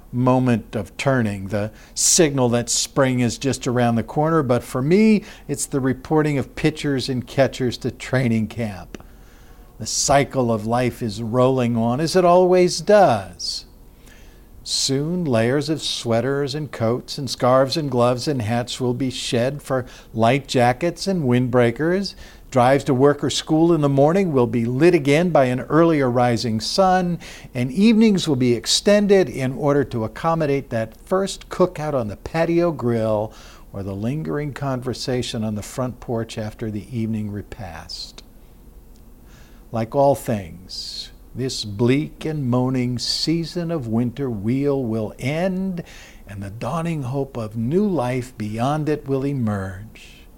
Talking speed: 150 wpm